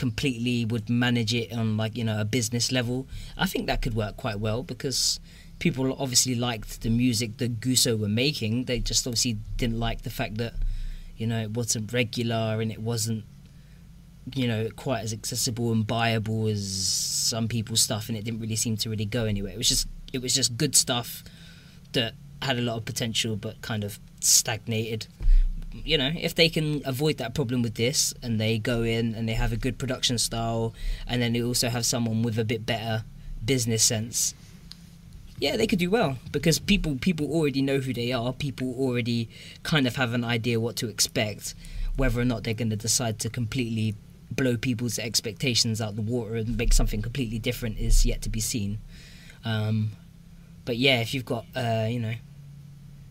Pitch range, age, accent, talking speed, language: 115-135 Hz, 20-39, British, 195 wpm, English